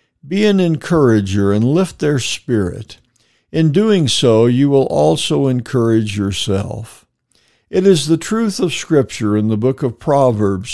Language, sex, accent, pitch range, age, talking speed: English, male, American, 115-150 Hz, 60-79, 145 wpm